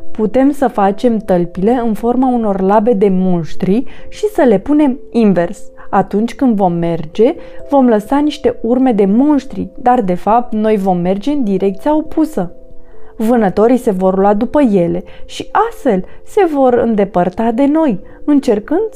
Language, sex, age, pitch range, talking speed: Romanian, female, 30-49, 190-275 Hz, 150 wpm